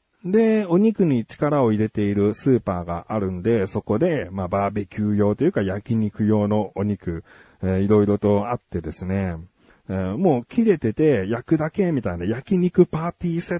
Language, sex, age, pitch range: Japanese, male, 40-59, 105-170 Hz